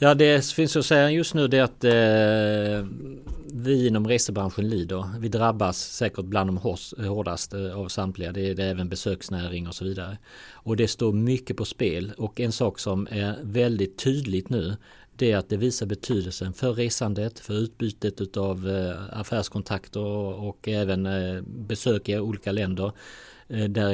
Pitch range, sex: 95-115 Hz, male